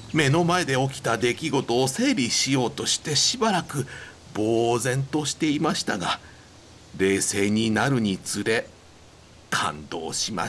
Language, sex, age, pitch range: Japanese, male, 60-79, 105-170 Hz